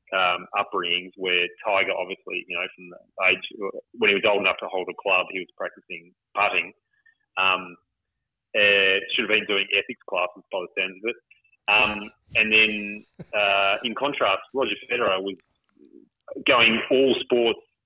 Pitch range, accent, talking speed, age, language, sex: 95-130 Hz, Australian, 160 wpm, 30-49, English, male